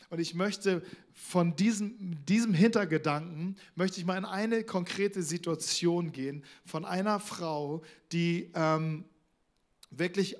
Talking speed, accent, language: 120 wpm, German, German